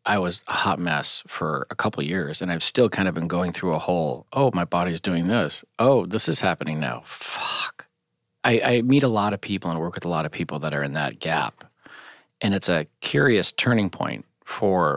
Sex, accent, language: male, American, English